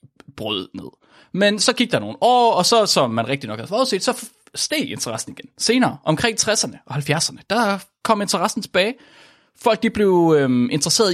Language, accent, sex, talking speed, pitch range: Danish, native, male, 185 wpm, 135-205 Hz